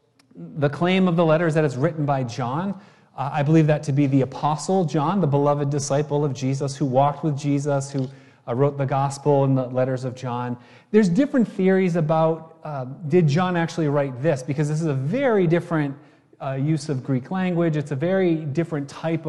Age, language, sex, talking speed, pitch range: 30-49, English, male, 200 wpm, 135-160 Hz